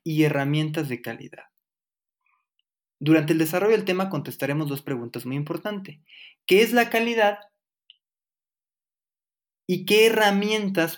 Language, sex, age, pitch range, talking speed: Spanish, male, 20-39, 145-195 Hz, 115 wpm